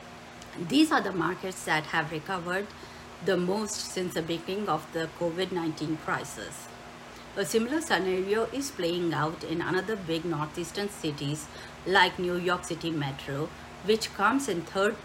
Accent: Indian